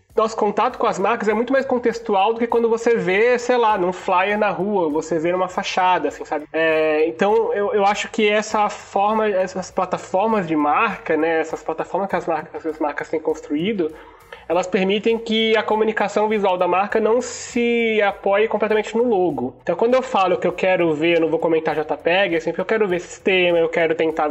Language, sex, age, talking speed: Portuguese, male, 20-39, 200 wpm